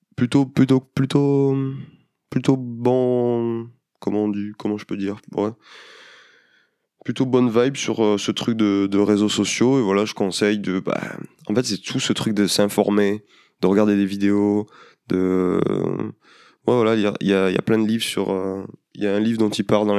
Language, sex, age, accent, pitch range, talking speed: French, male, 20-39, French, 100-120 Hz, 200 wpm